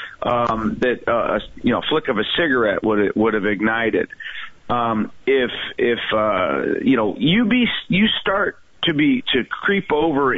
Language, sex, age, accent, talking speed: English, male, 40-59, American, 175 wpm